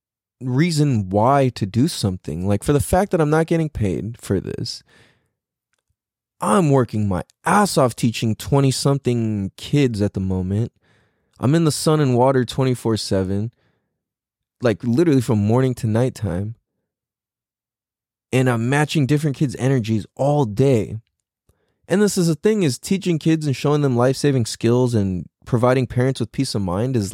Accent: American